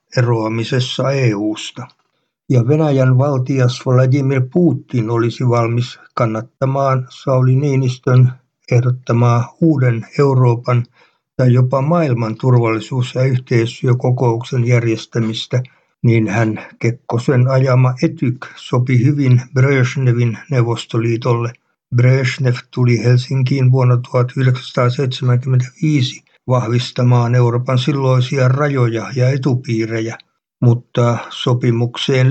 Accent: native